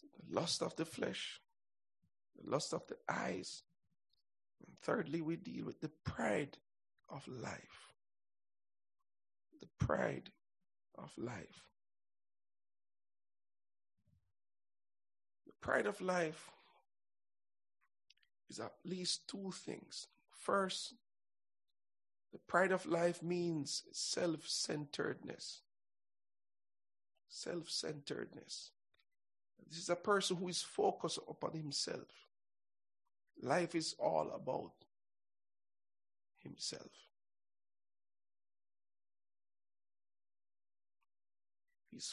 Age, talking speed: 60-79, 80 wpm